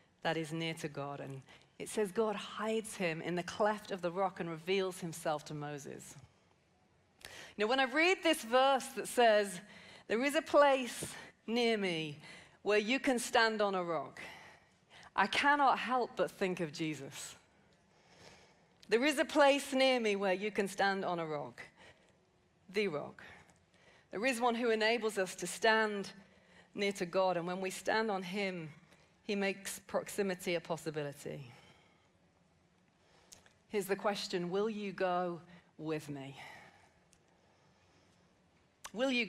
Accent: British